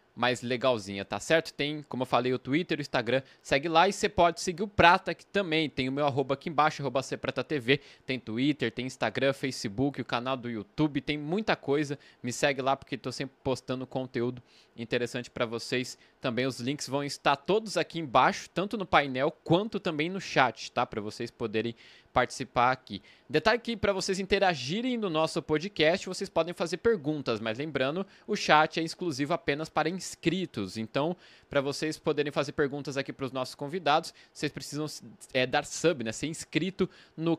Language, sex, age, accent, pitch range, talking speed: Portuguese, male, 20-39, Brazilian, 130-165 Hz, 185 wpm